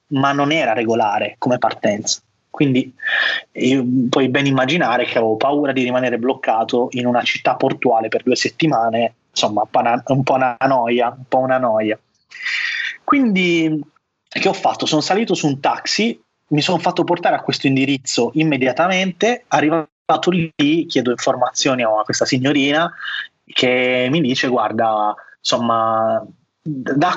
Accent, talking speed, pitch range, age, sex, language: native, 140 wpm, 125-155 Hz, 20-39, male, Italian